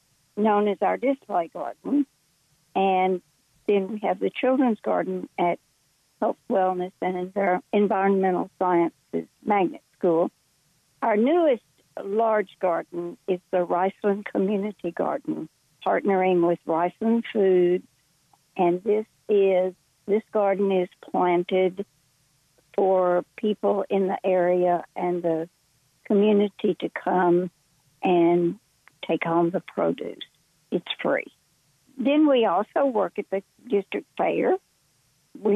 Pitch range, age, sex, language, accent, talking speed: 175-205 Hz, 60-79, female, English, American, 110 wpm